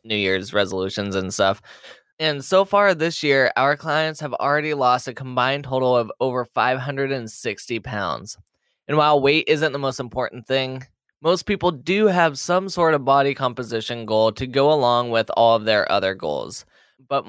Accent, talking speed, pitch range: American, 175 wpm, 120-165 Hz